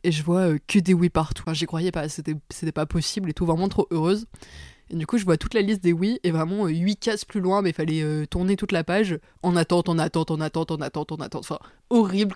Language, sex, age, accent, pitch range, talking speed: French, female, 20-39, French, 160-195 Hz, 280 wpm